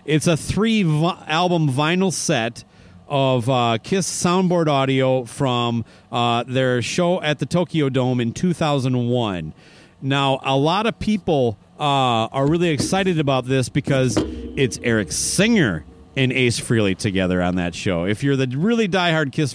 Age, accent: 40-59, American